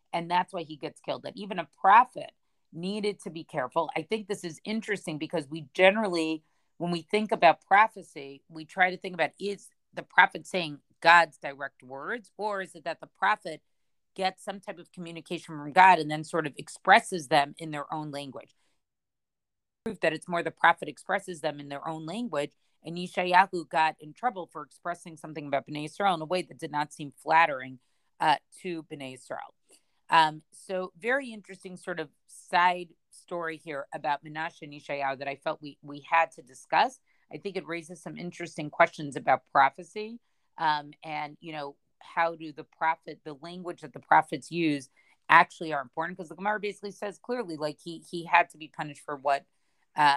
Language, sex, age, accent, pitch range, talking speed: English, female, 40-59, American, 150-185 Hz, 190 wpm